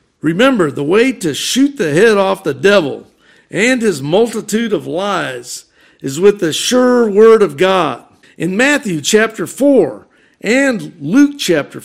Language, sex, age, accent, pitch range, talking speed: English, male, 50-69, American, 170-230 Hz, 145 wpm